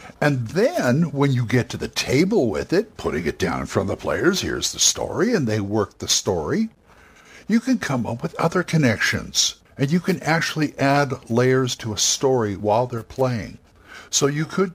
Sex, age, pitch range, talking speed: male, 60-79, 115-160 Hz, 195 wpm